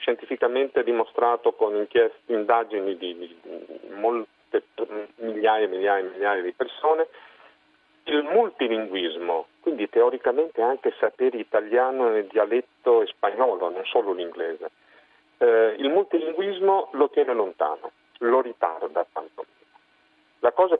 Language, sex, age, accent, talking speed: Italian, male, 50-69, native, 115 wpm